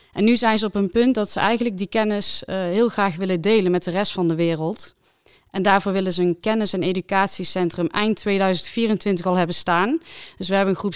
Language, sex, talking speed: Dutch, female, 220 wpm